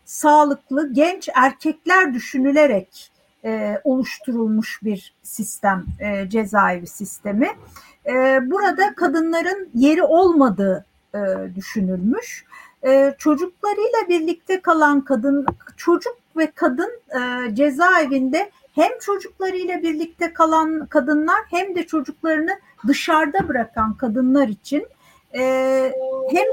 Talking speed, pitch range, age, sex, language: 95 wpm, 250-315 Hz, 50-69, female, Turkish